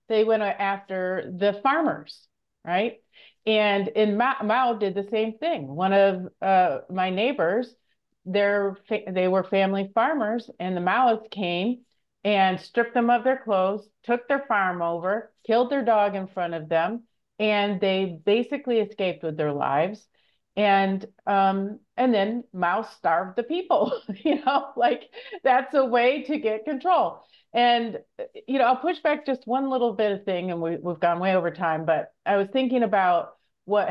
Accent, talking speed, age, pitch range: American, 165 wpm, 40-59, 170-230 Hz